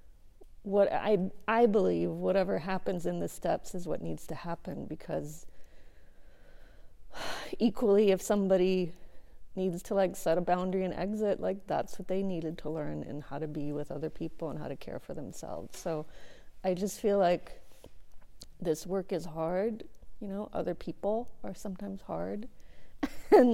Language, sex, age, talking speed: English, female, 30-49, 160 wpm